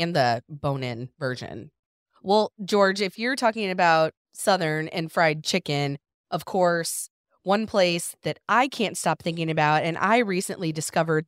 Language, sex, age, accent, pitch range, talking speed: English, female, 20-39, American, 150-185 Hz, 150 wpm